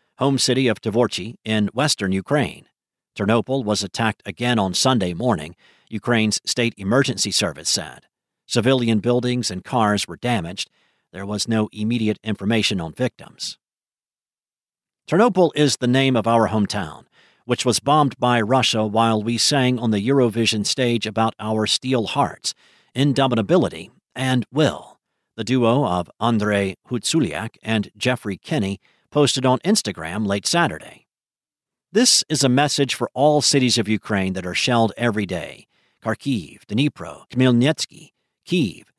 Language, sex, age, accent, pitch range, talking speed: English, male, 50-69, American, 110-140 Hz, 135 wpm